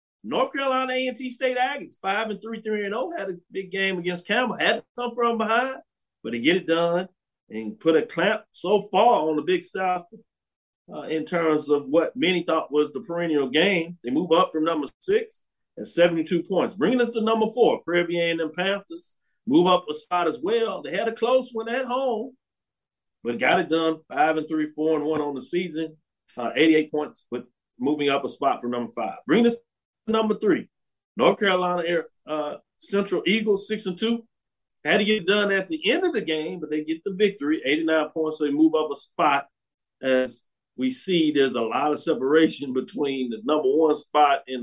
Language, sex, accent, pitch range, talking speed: English, male, American, 155-225 Hz, 205 wpm